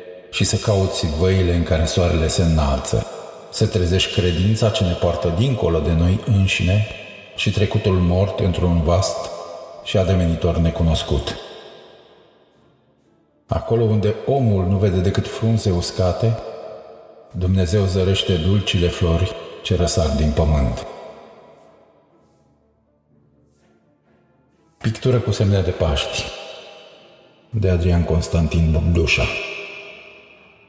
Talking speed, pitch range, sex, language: 100 wpm, 85-105 Hz, male, Romanian